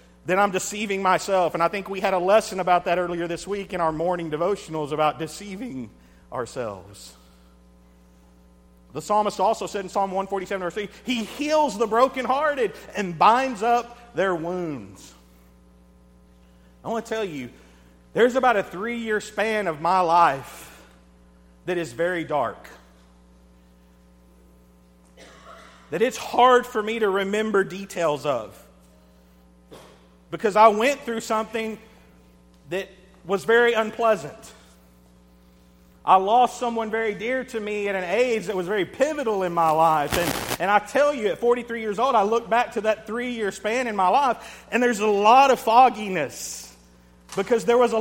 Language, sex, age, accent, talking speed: English, male, 50-69, American, 150 wpm